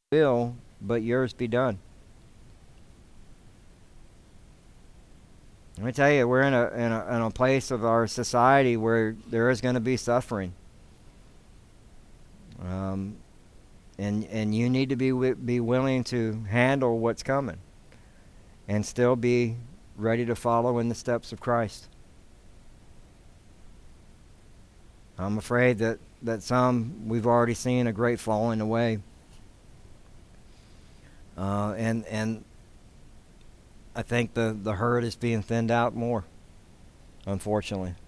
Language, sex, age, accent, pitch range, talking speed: English, male, 60-79, American, 100-120 Hz, 120 wpm